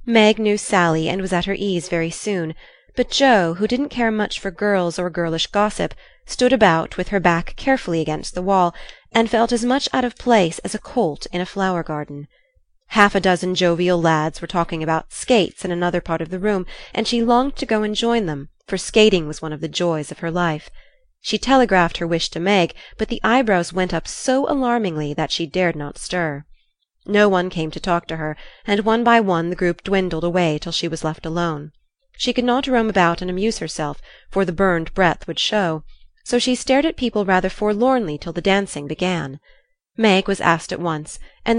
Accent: American